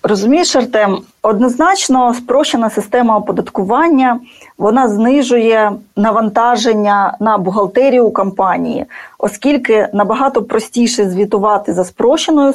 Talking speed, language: 90 wpm, Ukrainian